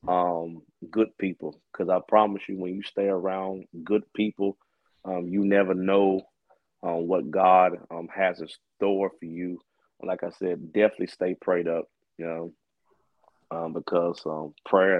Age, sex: 30-49, male